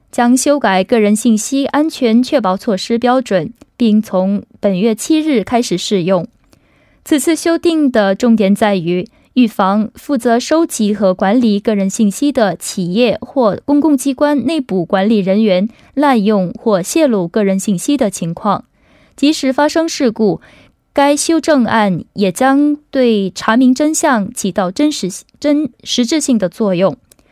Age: 20-39